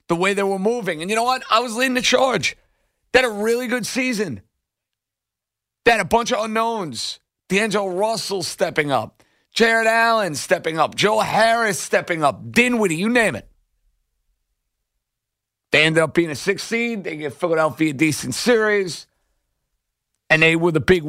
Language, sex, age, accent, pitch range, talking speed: English, male, 50-69, American, 140-200 Hz, 175 wpm